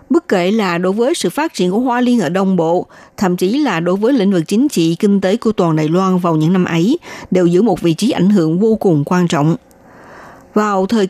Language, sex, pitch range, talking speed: Vietnamese, female, 170-210 Hz, 250 wpm